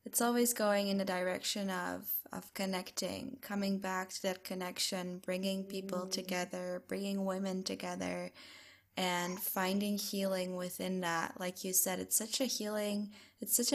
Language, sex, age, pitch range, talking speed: English, female, 10-29, 180-205 Hz, 150 wpm